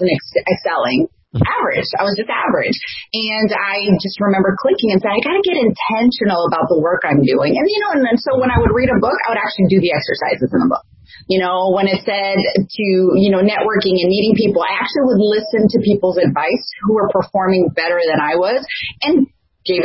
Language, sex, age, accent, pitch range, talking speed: English, female, 30-49, American, 180-230 Hz, 220 wpm